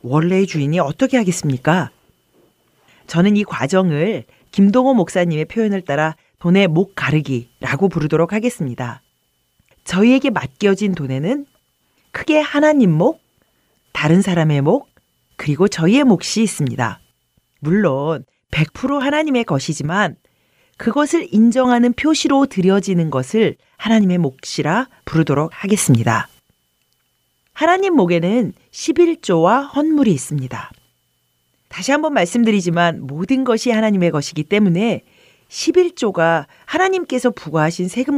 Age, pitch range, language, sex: 40-59, 150-235 Hz, Korean, female